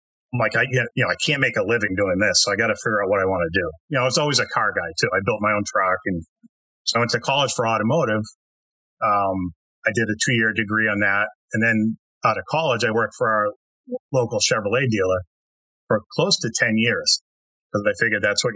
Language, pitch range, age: English, 100-130 Hz, 30-49